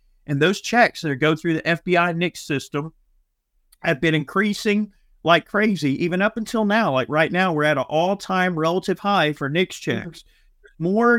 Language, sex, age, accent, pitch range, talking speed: English, male, 40-59, American, 145-185 Hz, 170 wpm